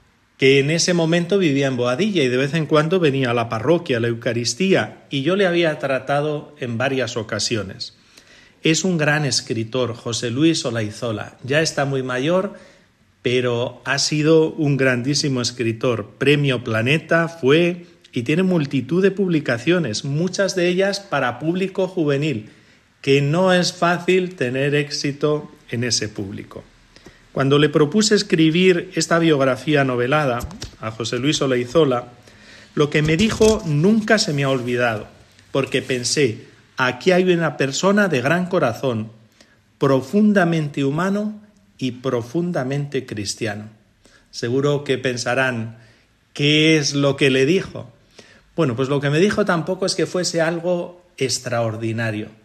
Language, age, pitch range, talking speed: Spanish, 40-59, 120-170 Hz, 140 wpm